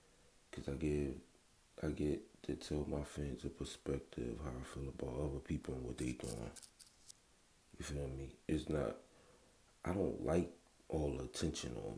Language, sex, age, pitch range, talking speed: English, male, 30-49, 70-80 Hz, 165 wpm